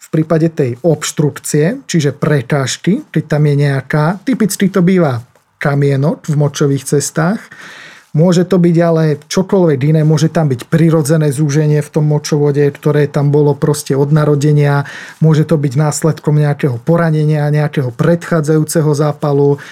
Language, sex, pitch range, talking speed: Slovak, male, 145-175 Hz, 140 wpm